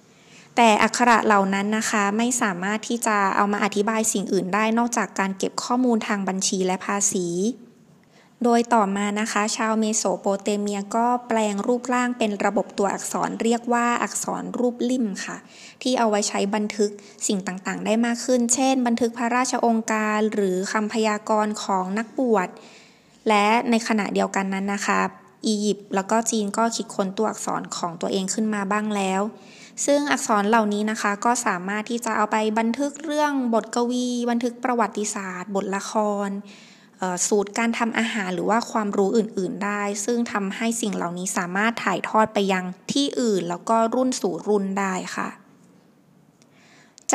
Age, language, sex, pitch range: 20-39, Thai, female, 200-235 Hz